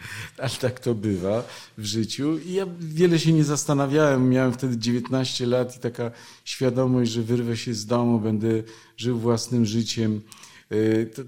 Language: Polish